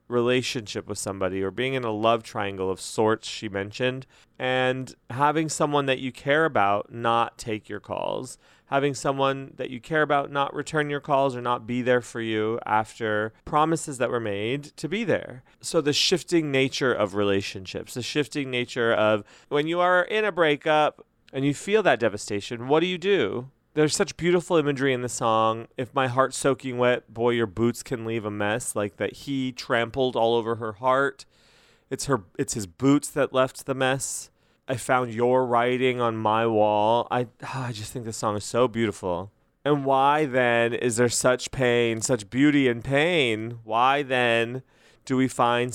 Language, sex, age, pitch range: English, male, 30-49, 115-140 Hz